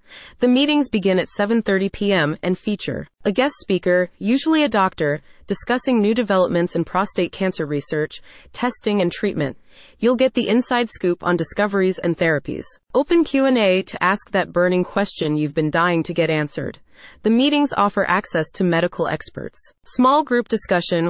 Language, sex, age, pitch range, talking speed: English, female, 30-49, 175-230 Hz, 160 wpm